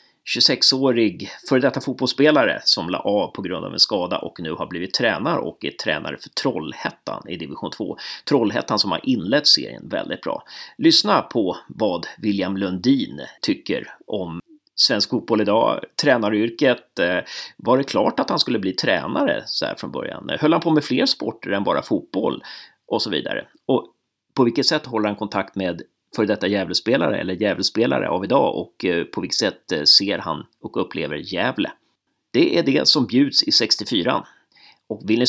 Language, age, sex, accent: Swedish, 30-49, male, native